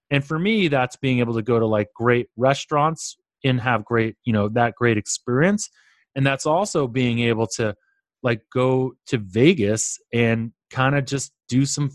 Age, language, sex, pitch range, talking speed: 30-49, English, male, 115-140 Hz, 180 wpm